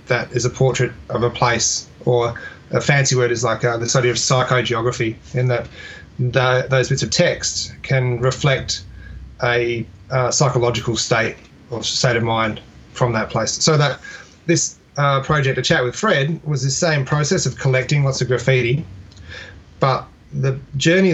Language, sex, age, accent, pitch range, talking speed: English, male, 30-49, Australian, 120-140 Hz, 165 wpm